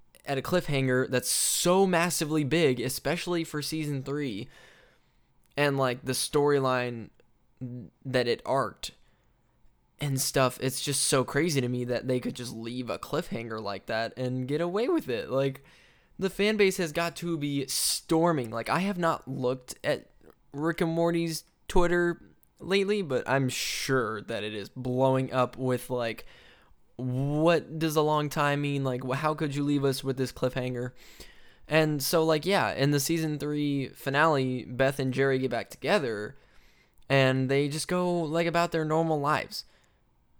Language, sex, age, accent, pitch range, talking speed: English, male, 10-29, American, 130-165 Hz, 160 wpm